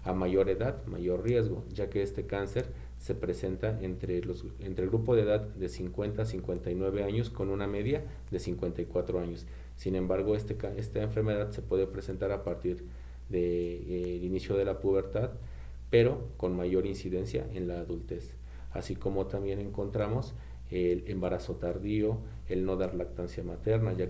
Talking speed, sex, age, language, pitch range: 165 wpm, male, 40-59, Spanish, 90-100 Hz